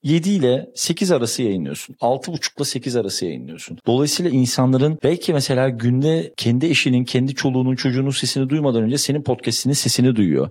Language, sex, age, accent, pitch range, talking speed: Turkish, male, 40-59, native, 125-175 Hz, 155 wpm